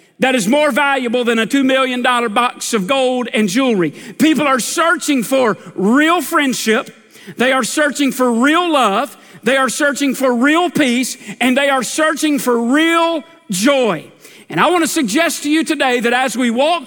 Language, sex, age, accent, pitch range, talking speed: English, male, 50-69, American, 235-300 Hz, 175 wpm